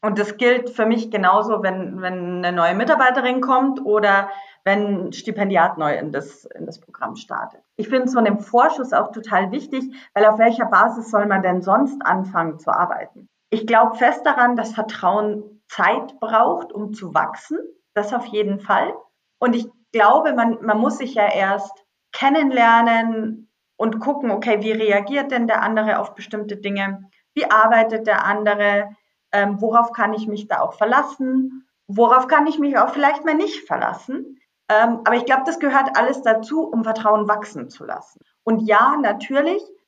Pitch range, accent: 205-255 Hz, German